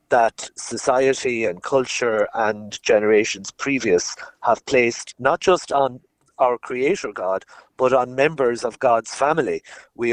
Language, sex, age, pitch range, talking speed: English, male, 60-79, 120-145 Hz, 130 wpm